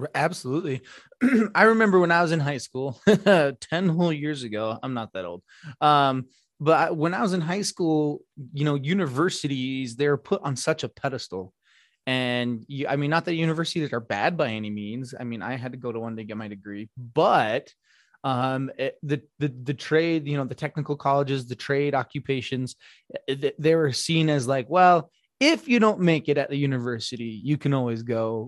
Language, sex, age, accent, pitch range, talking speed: English, male, 20-39, American, 125-155 Hz, 190 wpm